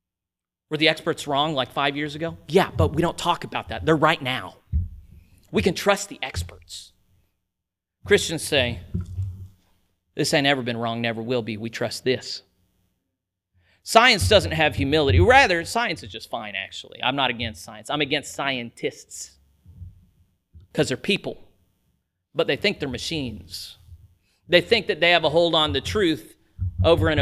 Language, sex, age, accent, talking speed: English, male, 40-59, American, 160 wpm